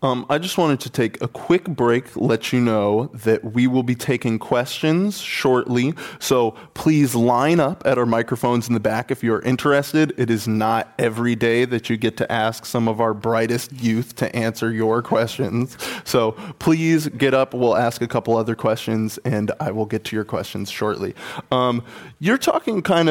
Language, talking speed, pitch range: English, 190 wpm, 115-145 Hz